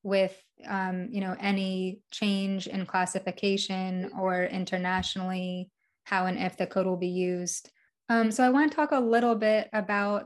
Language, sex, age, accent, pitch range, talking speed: English, female, 20-39, American, 190-205 Hz, 165 wpm